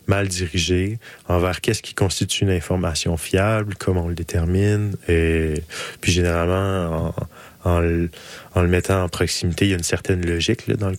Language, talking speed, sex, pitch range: French, 180 wpm, male, 85-100 Hz